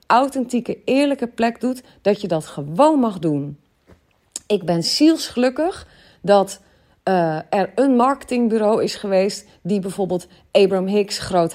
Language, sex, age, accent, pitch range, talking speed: Dutch, female, 40-59, Dutch, 165-225 Hz, 130 wpm